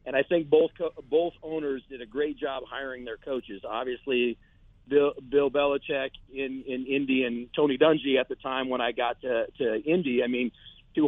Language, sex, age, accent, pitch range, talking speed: English, male, 40-59, American, 130-160 Hz, 195 wpm